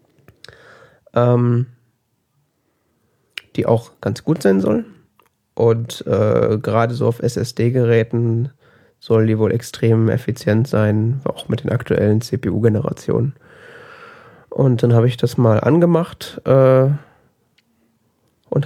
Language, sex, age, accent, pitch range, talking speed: German, male, 30-49, German, 110-135 Hz, 105 wpm